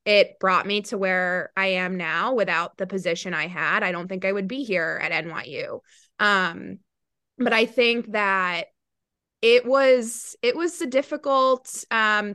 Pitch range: 185-225 Hz